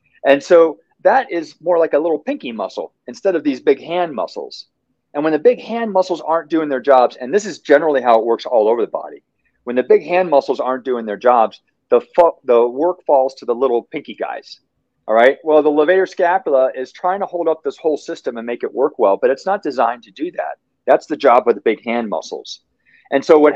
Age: 40-59